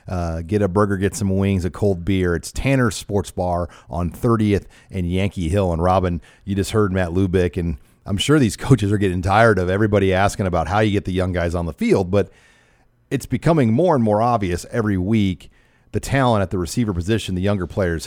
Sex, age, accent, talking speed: male, 40-59, American, 215 wpm